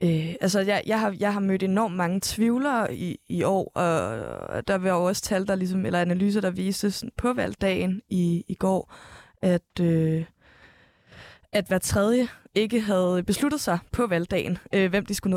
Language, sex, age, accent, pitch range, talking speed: Danish, female, 20-39, native, 180-215 Hz, 175 wpm